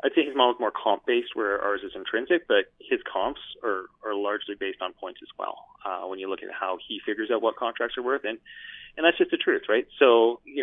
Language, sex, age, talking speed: English, male, 30-49, 245 wpm